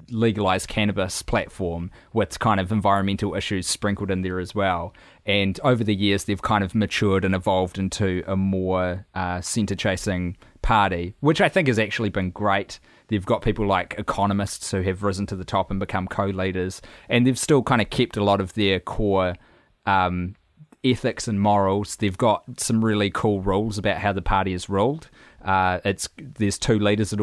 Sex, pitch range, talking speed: male, 95-110 Hz, 185 wpm